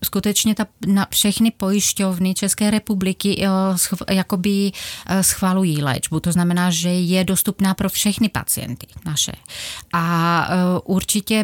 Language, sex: Czech, female